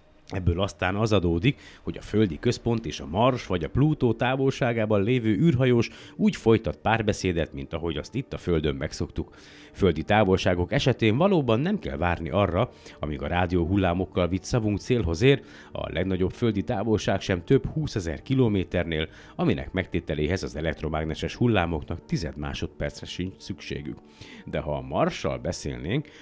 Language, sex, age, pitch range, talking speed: Hungarian, male, 50-69, 85-115 Hz, 150 wpm